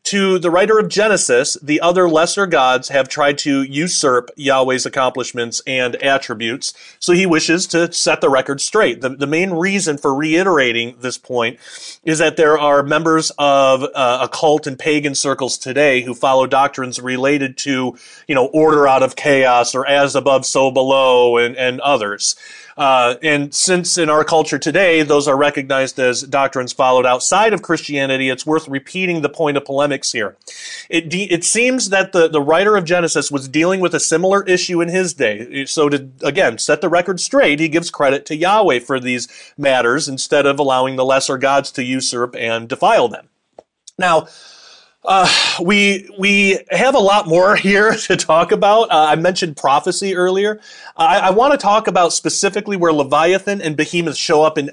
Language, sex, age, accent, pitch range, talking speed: English, male, 30-49, American, 135-180 Hz, 180 wpm